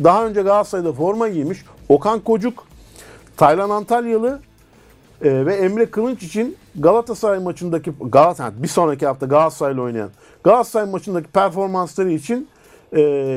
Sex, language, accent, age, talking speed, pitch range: male, Turkish, native, 50-69, 120 wpm, 140-225 Hz